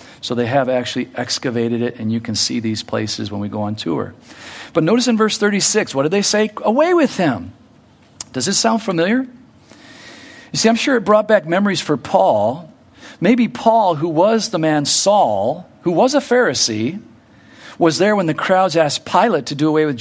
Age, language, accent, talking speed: 50-69, English, American, 195 wpm